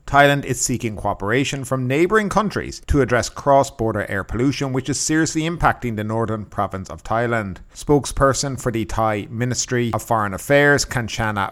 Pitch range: 105-130 Hz